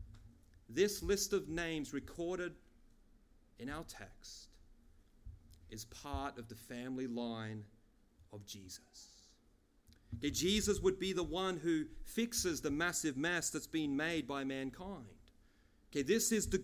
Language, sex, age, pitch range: English, male, 30-49, 100-160 Hz